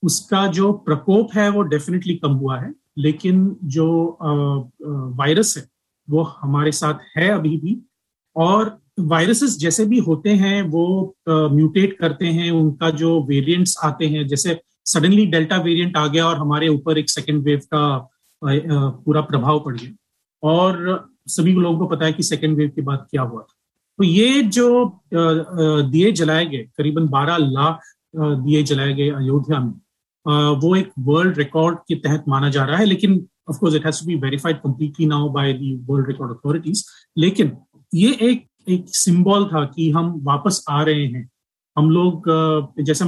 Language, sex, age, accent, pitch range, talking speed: Hindi, male, 40-59, native, 145-180 Hz, 160 wpm